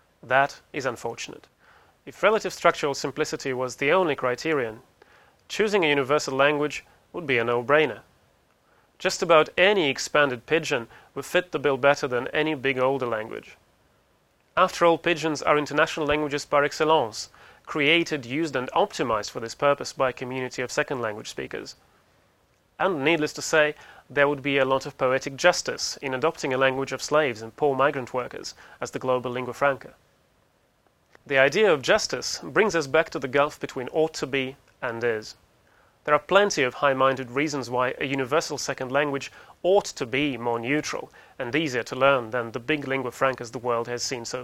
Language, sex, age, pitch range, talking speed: English, male, 30-49, 130-150 Hz, 175 wpm